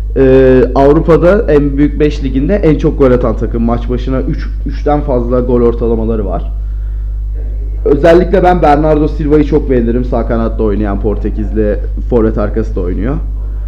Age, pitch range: 40-59, 105-145 Hz